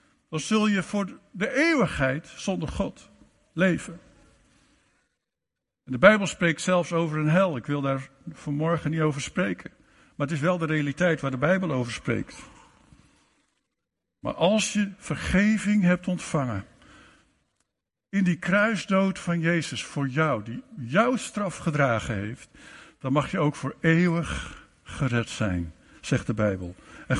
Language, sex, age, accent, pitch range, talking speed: Dutch, male, 60-79, Dutch, 145-205 Hz, 140 wpm